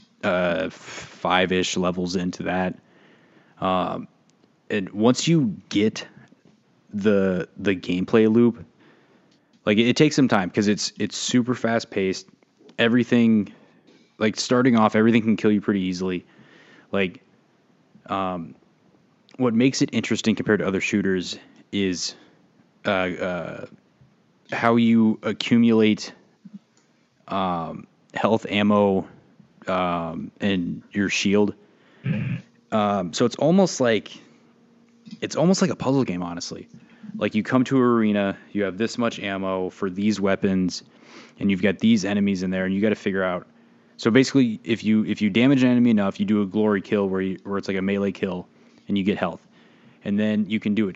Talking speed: 155 wpm